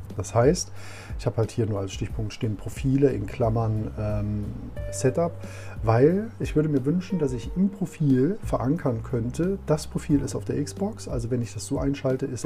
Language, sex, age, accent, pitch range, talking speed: German, male, 40-59, German, 105-140 Hz, 190 wpm